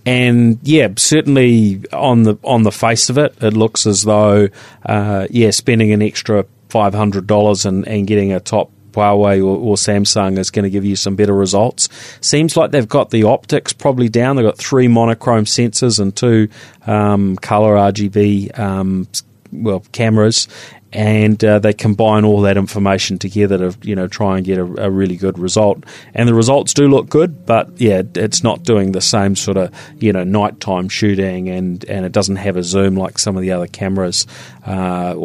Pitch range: 95-110 Hz